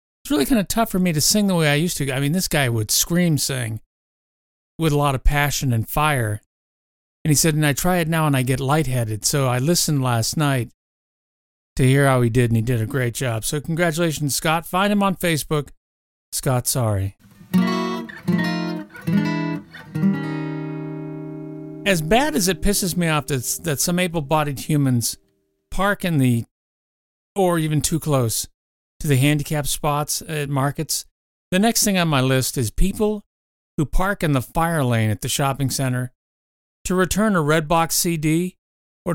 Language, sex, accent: English, male, American